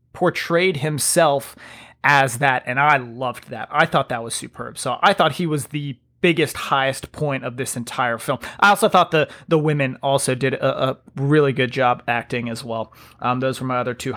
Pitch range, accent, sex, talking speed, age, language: 135-165 Hz, American, male, 205 wpm, 30-49, English